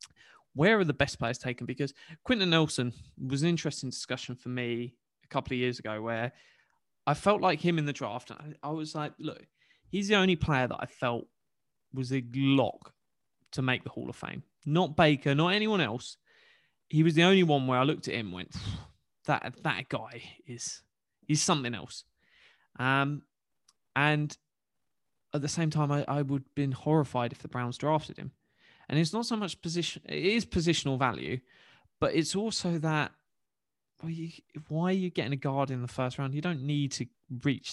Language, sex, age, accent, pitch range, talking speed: English, male, 20-39, British, 125-155 Hz, 190 wpm